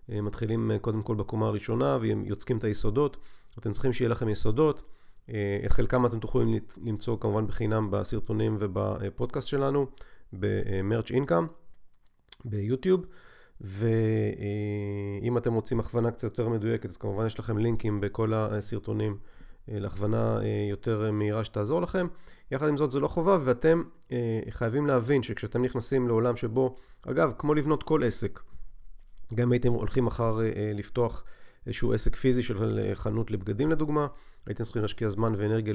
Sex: male